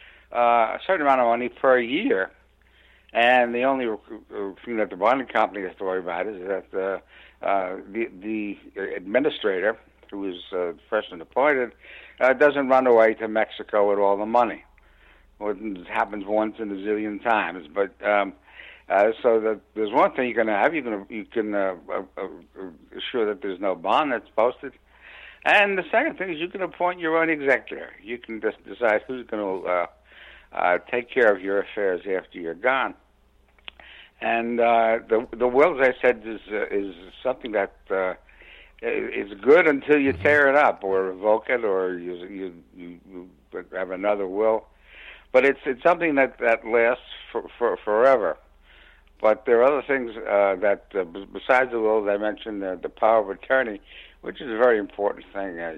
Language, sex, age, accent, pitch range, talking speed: English, male, 60-79, American, 95-130 Hz, 185 wpm